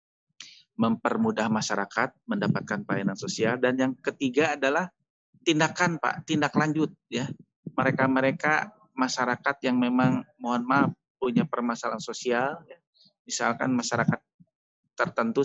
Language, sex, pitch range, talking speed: Indonesian, male, 120-150 Hz, 105 wpm